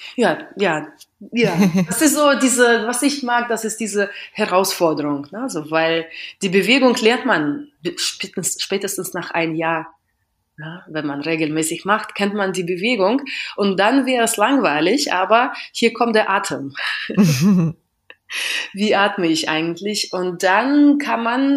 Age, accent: 30-49, German